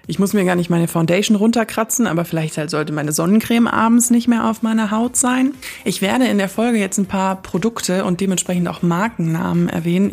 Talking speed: 205 wpm